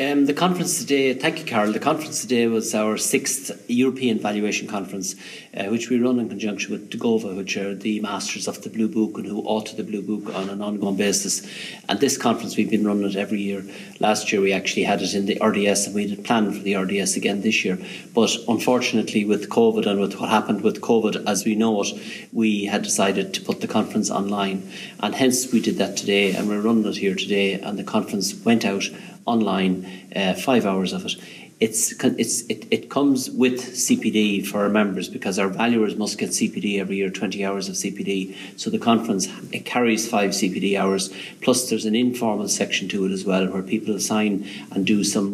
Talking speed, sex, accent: 210 wpm, male, Irish